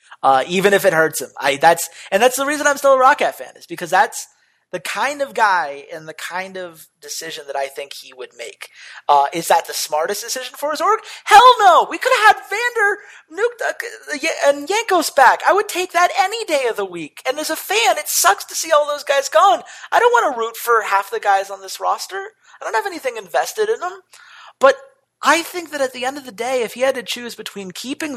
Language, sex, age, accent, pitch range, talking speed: English, male, 30-49, American, 165-275 Hz, 240 wpm